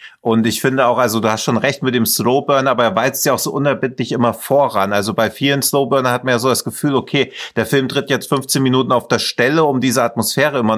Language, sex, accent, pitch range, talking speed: German, male, German, 120-150 Hz, 250 wpm